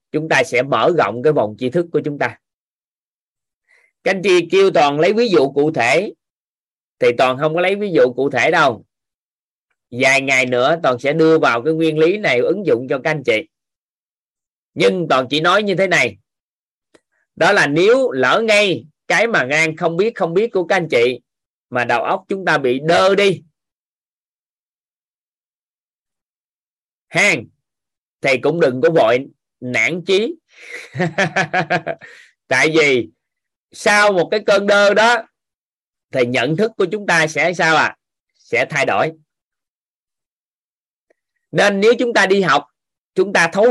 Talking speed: 160 wpm